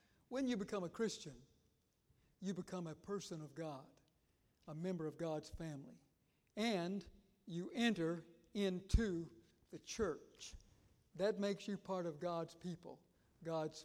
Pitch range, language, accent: 155-195 Hz, English, American